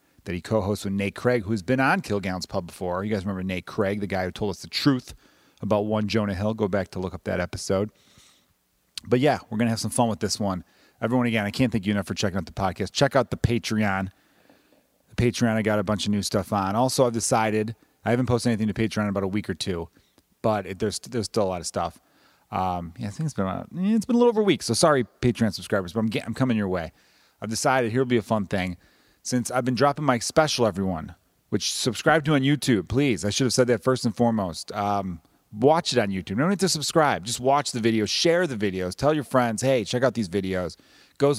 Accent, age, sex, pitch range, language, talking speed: American, 30-49, male, 100-120 Hz, English, 255 wpm